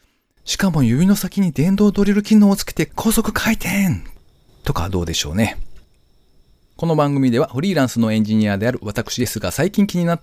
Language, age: Japanese, 40-59